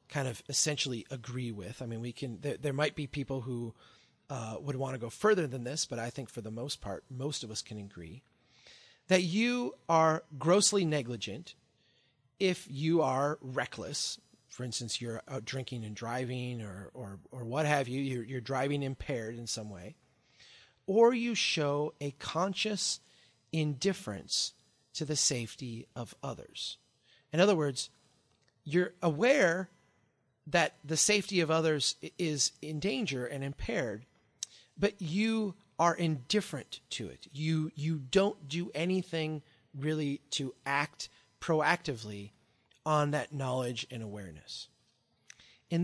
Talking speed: 145 wpm